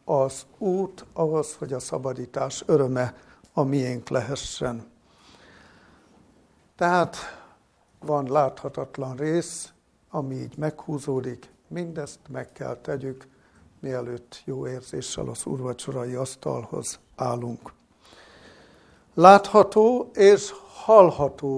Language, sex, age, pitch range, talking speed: Hungarian, male, 60-79, 130-160 Hz, 85 wpm